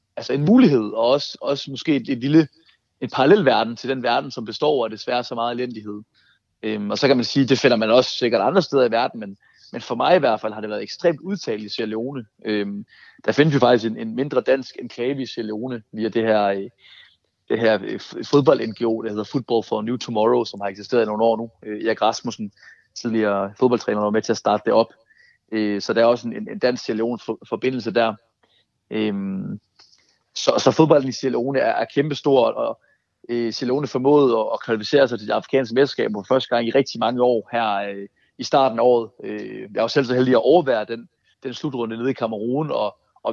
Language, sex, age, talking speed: Danish, male, 30-49, 220 wpm